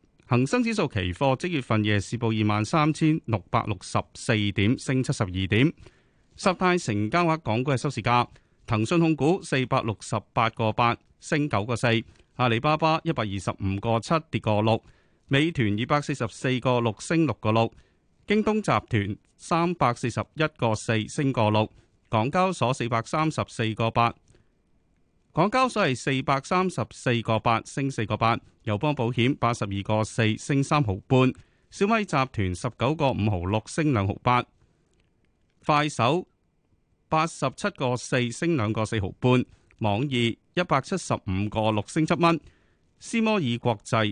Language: Chinese